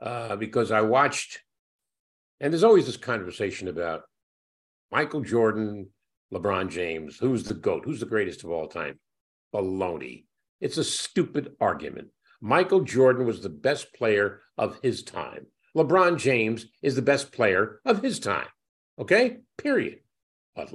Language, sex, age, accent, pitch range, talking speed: English, male, 50-69, American, 105-145 Hz, 140 wpm